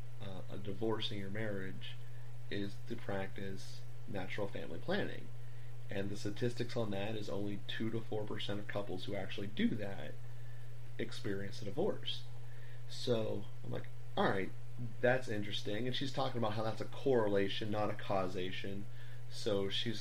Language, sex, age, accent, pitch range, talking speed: English, male, 30-49, American, 105-120 Hz, 155 wpm